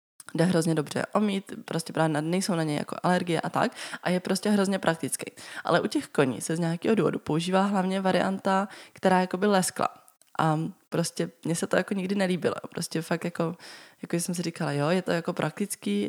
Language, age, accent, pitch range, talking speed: Czech, 20-39, native, 165-200 Hz, 200 wpm